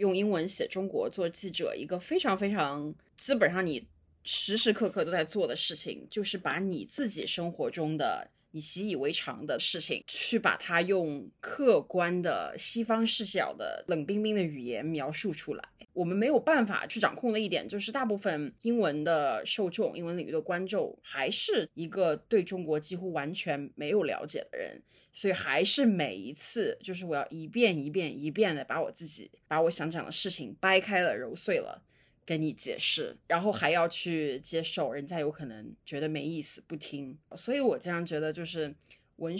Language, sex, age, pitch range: Chinese, female, 20-39, 155-205 Hz